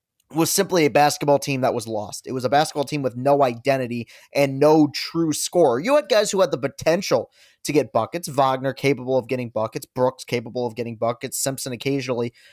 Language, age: English, 20-39